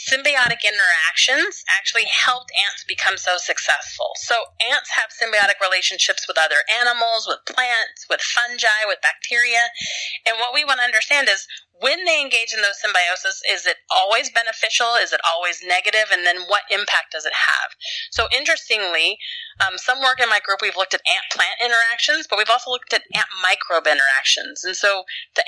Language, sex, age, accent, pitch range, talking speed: English, female, 30-49, American, 195-265 Hz, 170 wpm